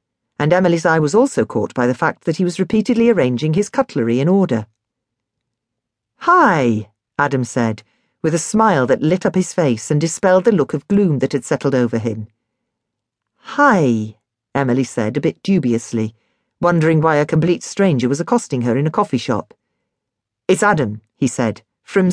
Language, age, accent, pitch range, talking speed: English, 40-59, British, 120-190 Hz, 170 wpm